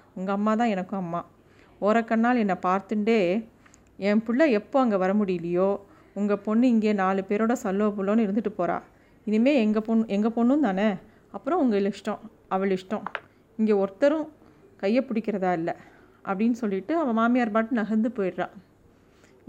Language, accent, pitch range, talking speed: Tamil, native, 195-235 Hz, 140 wpm